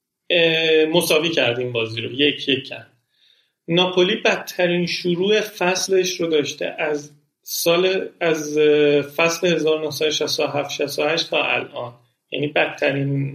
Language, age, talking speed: Persian, 40-59, 105 wpm